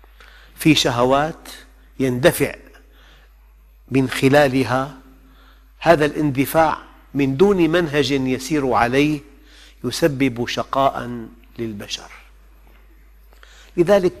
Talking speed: 70 wpm